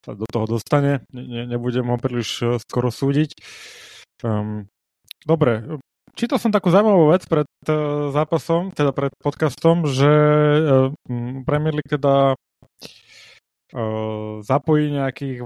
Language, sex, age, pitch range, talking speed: Slovak, male, 20-39, 125-150 Hz, 120 wpm